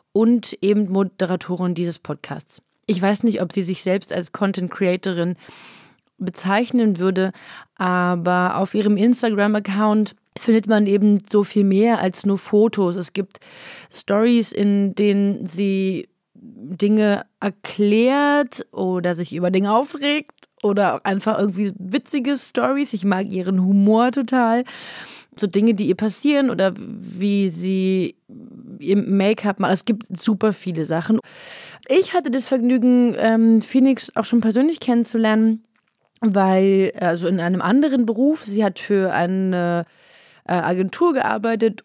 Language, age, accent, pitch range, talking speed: German, 30-49, German, 190-225 Hz, 130 wpm